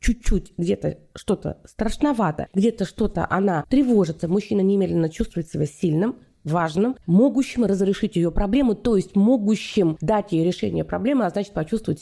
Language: Russian